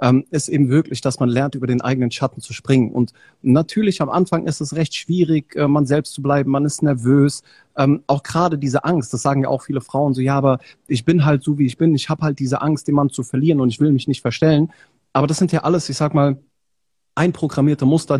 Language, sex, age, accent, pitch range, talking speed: German, male, 30-49, German, 130-160 Hz, 235 wpm